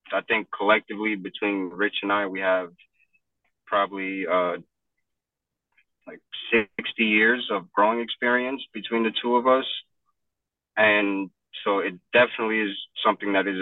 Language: English